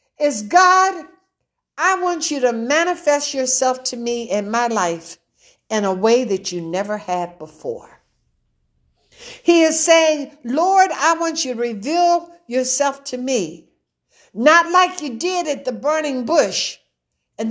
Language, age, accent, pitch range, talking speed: English, 60-79, American, 270-355 Hz, 145 wpm